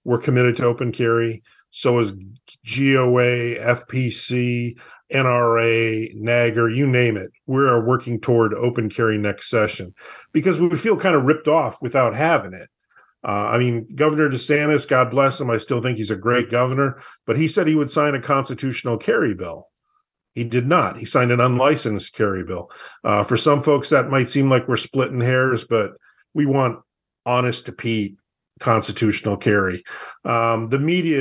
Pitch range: 110-130 Hz